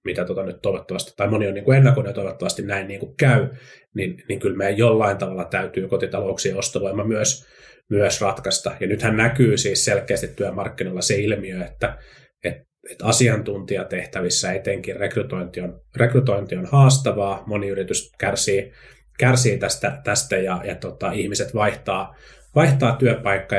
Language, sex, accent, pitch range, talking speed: Finnish, male, native, 95-125 Hz, 150 wpm